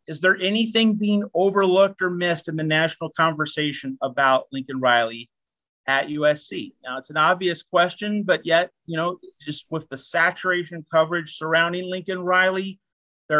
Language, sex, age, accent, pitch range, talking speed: English, male, 40-59, American, 145-185 Hz, 150 wpm